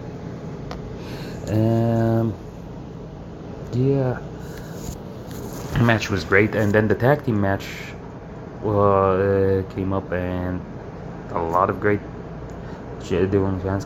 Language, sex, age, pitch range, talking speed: English, male, 20-39, 90-105 Hz, 95 wpm